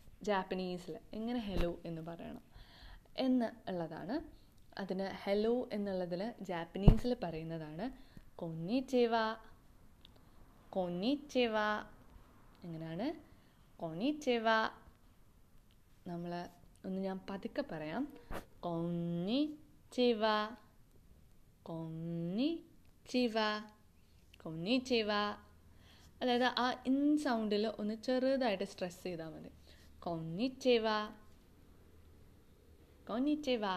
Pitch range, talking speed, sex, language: 170-240 Hz, 65 wpm, female, Malayalam